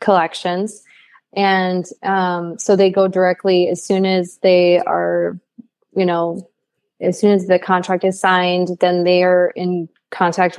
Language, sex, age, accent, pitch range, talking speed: English, female, 20-39, American, 175-195 Hz, 145 wpm